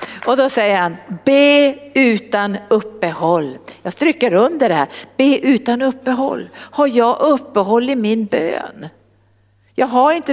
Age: 60-79